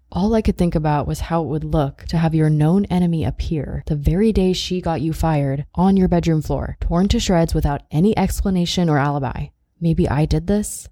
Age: 20-39